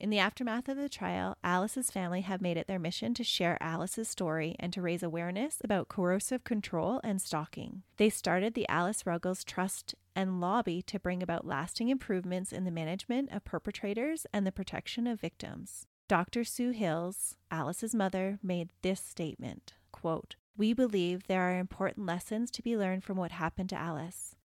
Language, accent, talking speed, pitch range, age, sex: English, American, 175 wpm, 170-205 Hz, 30-49, female